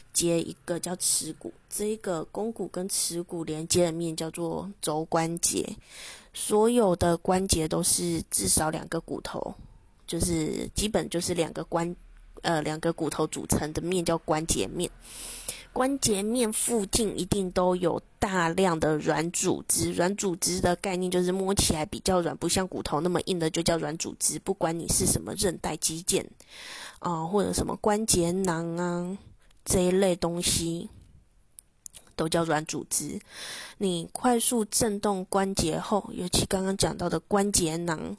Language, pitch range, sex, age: Chinese, 165-200 Hz, female, 20-39